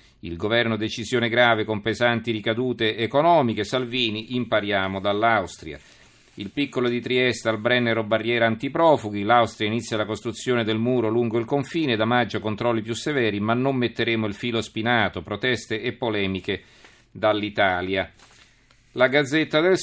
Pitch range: 105-125 Hz